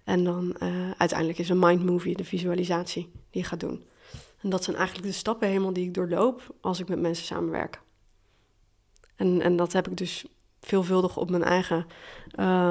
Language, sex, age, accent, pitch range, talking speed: Dutch, female, 20-39, Dutch, 175-210 Hz, 190 wpm